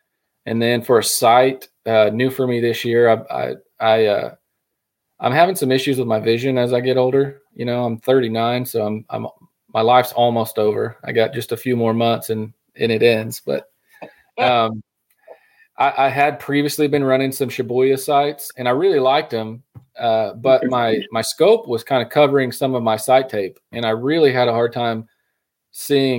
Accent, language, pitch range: American, English, 110-130 Hz